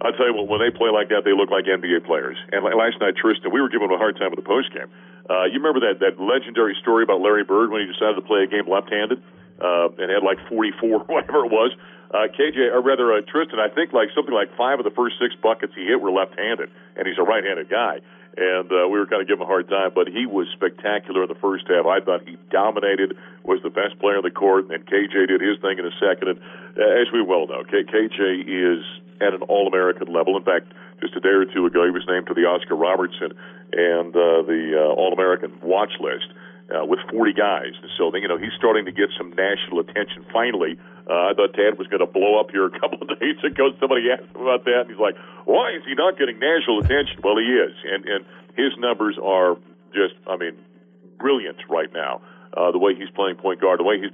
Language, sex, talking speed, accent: English, male, 245 wpm, American